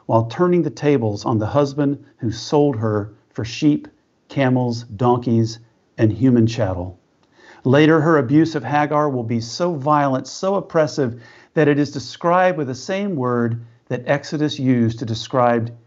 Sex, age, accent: male, 50-69, American